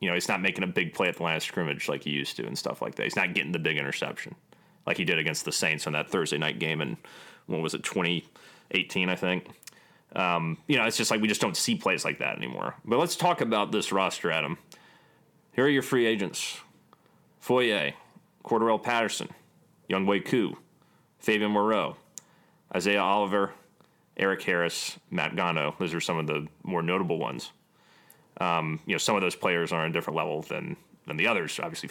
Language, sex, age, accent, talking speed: English, male, 30-49, American, 205 wpm